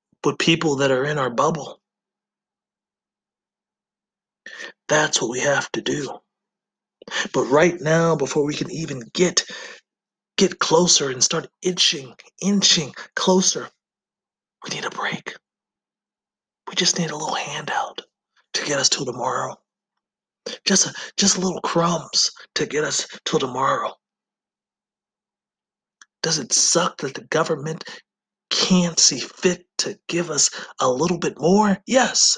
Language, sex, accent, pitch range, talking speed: English, male, American, 155-190 Hz, 130 wpm